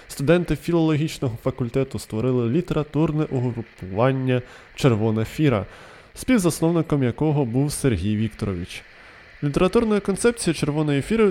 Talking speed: 90 wpm